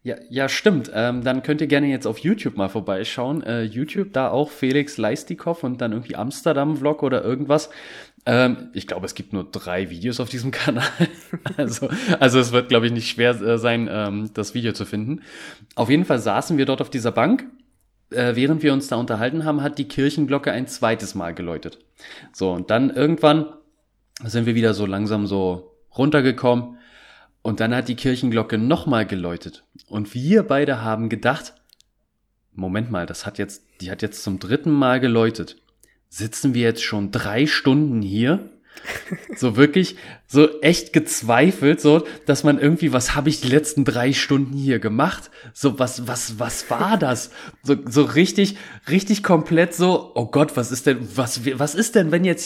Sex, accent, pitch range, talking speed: male, German, 115-155 Hz, 180 wpm